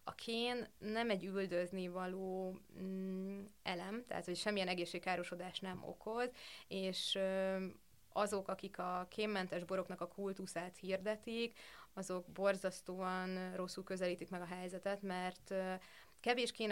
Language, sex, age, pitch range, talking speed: Hungarian, female, 20-39, 180-205 Hz, 110 wpm